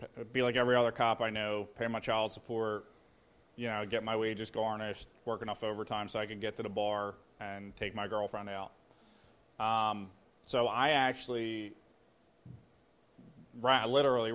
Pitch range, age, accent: 105-120 Hz, 20-39, American